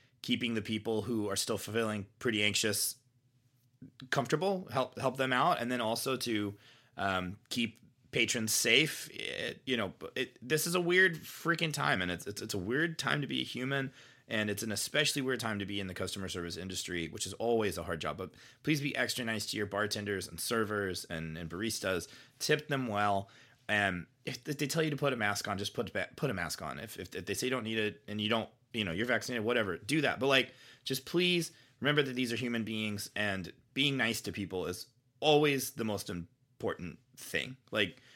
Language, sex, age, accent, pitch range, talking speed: English, male, 30-49, American, 100-130 Hz, 210 wpm